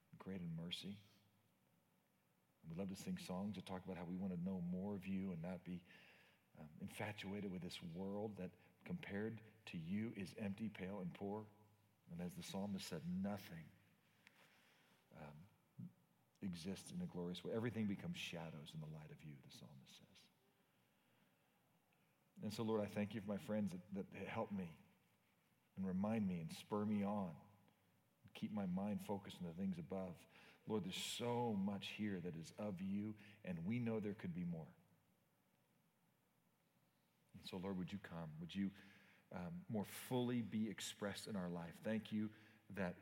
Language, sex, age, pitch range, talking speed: English, male, 40-59, 95-115 Hz, 170 wpm